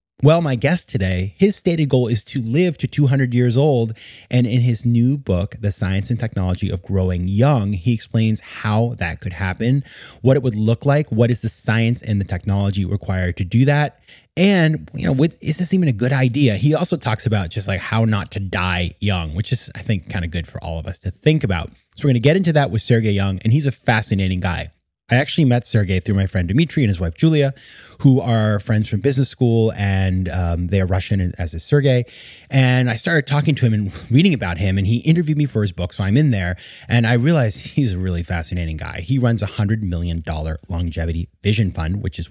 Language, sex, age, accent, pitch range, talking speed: English, male, 30-49, American, 95-130 Hz, 230 wpm